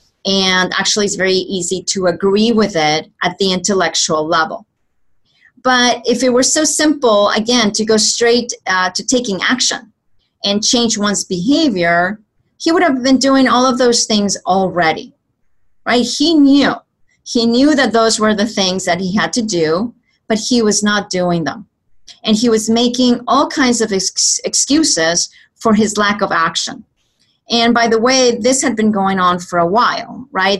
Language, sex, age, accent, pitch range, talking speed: English, female, 40-59, American, 190-240 Hz, 175 wpm